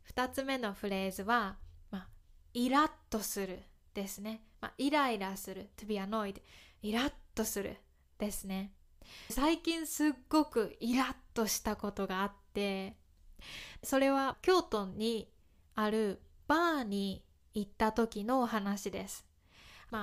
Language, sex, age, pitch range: Japanese, female, 20-39, 200-280 Hz